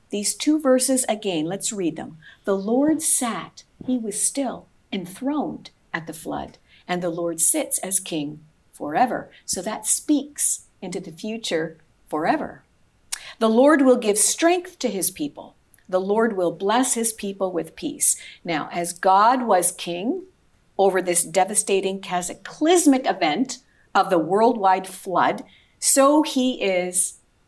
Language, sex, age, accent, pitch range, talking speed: English, female, 50-69, American, 185-260 Hz, 140 wpm